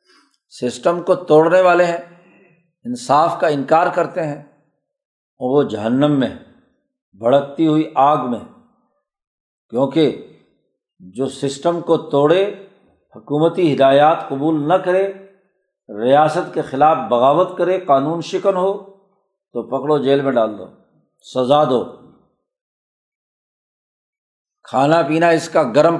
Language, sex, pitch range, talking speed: Urdu, male, 140-195 Hz, 110 wpm